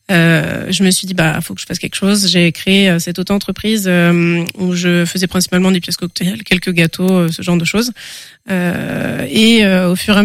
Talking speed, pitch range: 230 wpm, 180-200 Hz